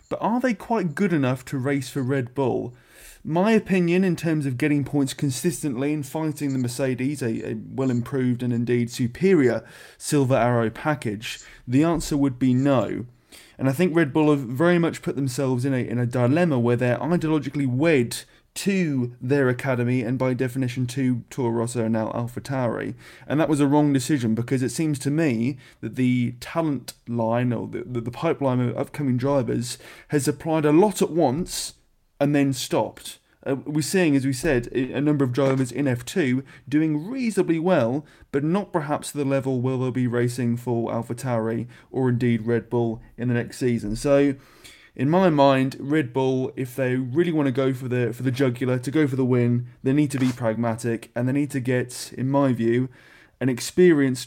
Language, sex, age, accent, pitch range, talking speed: English, male, 20-39, British, 120-150 Hz, 190 wpm